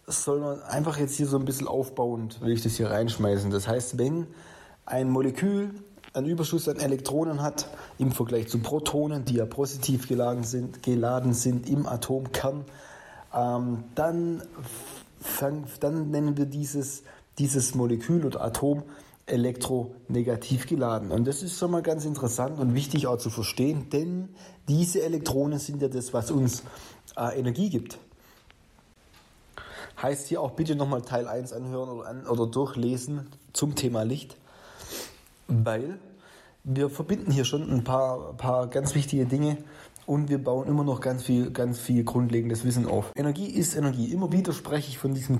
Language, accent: German, German